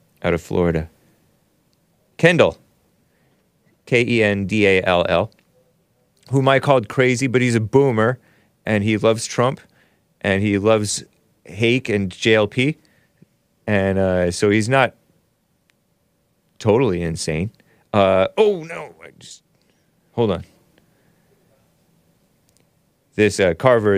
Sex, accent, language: male, American, English